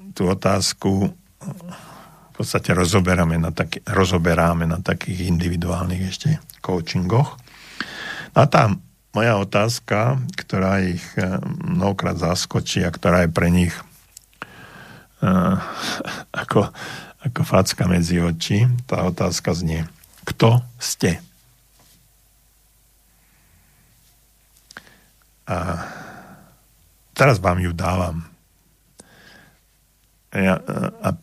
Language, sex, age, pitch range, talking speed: Slovak, male, 50-69, 85-115 Hz, 85 wpm